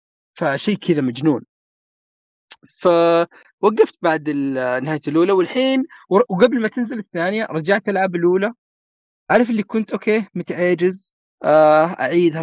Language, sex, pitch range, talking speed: Arabic, male, 155-210 Hz, 100 wpm